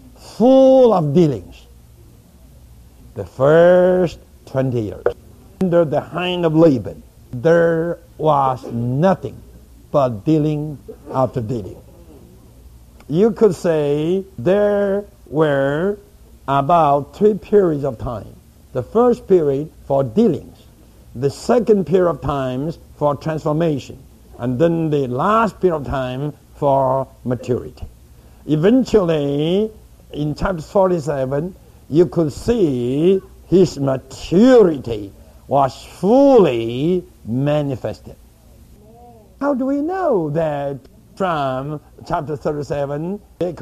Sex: male